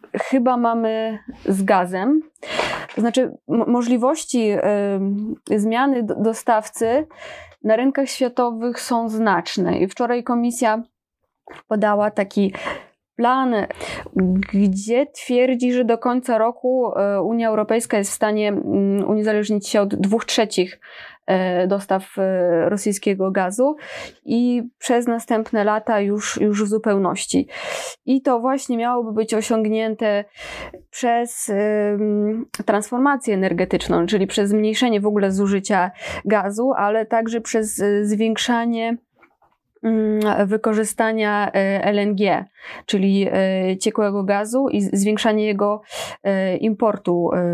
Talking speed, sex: 95 wpm, female